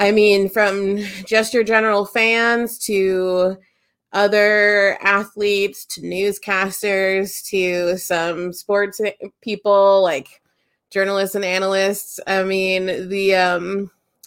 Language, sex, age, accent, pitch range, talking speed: English, female, 30-49, American, 185-220 Hz, 100 wpm